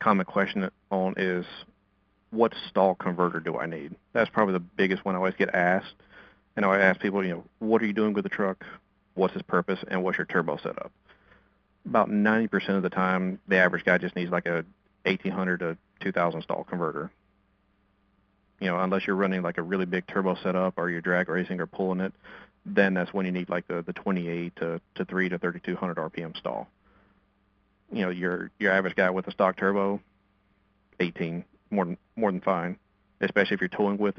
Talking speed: 200 wpm